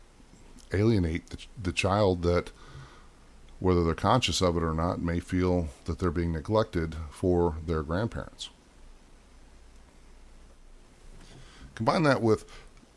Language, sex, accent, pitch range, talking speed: English, male, American, 80-100 Hz, 110 wpm